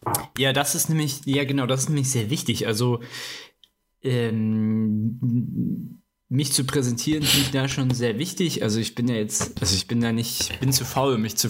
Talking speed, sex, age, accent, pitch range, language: 195 wpm, male, 20-39, German, 105-125 Hz, German